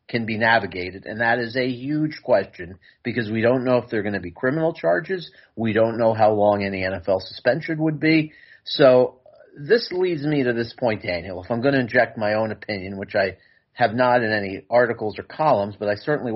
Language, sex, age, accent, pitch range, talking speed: English, male, 40-59, American, 105-130 Hz, 215 wpm